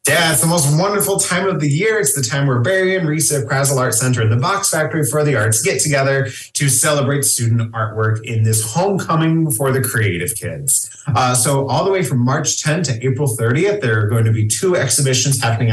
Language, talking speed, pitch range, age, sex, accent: English, 225 wpm, 115-150 Hz, 20-39, male, American